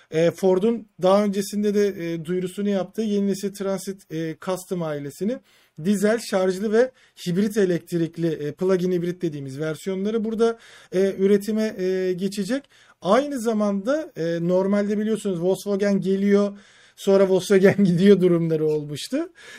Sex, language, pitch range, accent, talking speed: male, Turkish, 165-205 Hz, native, 100 wpm